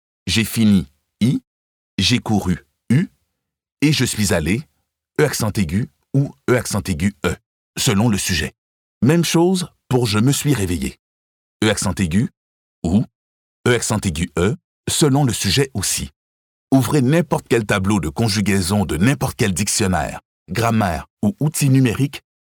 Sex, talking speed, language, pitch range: male, 145 wpm, French, 90-130 Hz